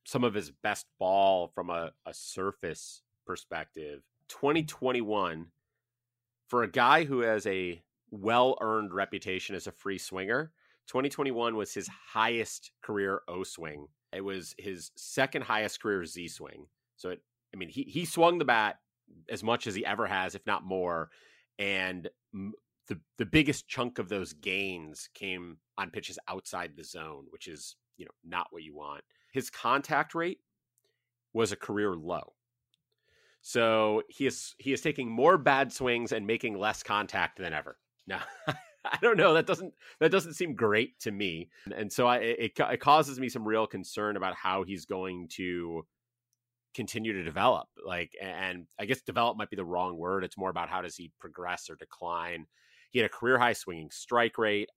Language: English